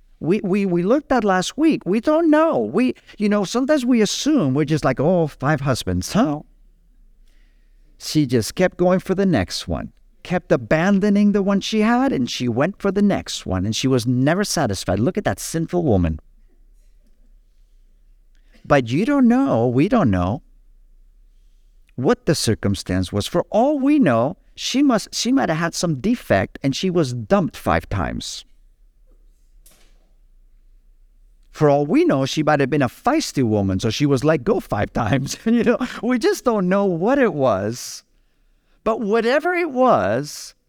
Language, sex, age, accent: English, male, 50-69, American